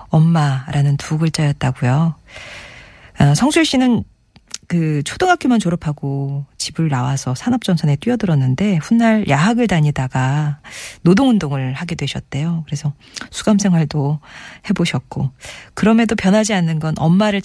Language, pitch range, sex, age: Korean, 145-195 Hz, female, 40-59